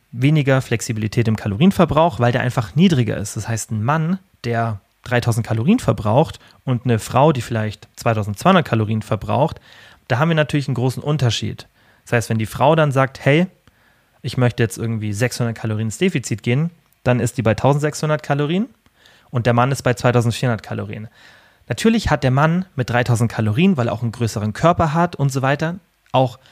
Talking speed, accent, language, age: 180 wpm, German, German, 30-49